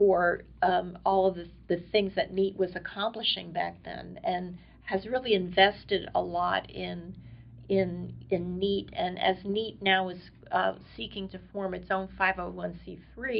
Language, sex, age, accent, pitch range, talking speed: English, female, 40-59, American, 180-195 Hz, 155 wpm